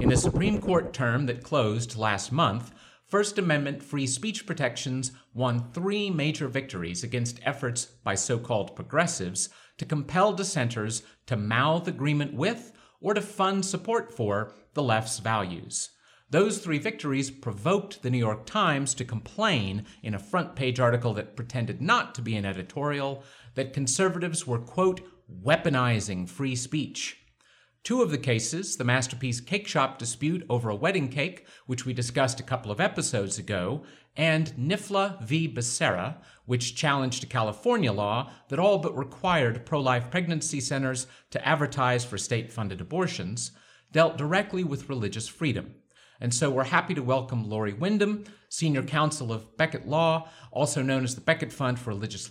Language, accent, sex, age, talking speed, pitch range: English, American, male, 50-69, 155 wpm, 120-160 Hz